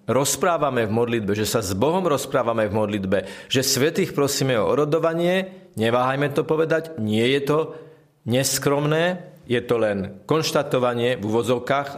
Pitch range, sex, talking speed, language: 115-155 Hz, male, 140 wpm, Slovak